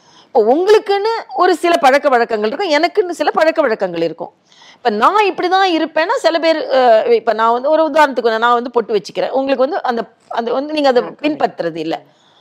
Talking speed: 165 wpm